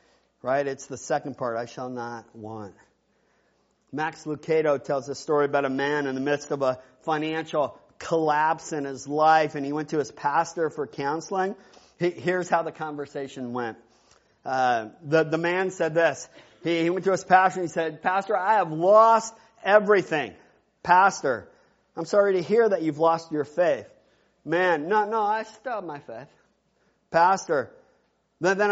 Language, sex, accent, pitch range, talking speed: English, male, American, 160-220 Hz, 165 wpm